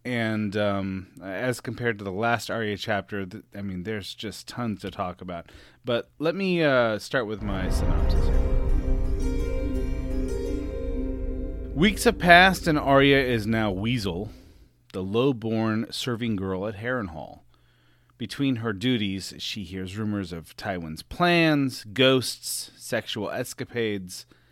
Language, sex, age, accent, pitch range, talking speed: English, male, 30-49, American, 95-130 Hz, 130 wpm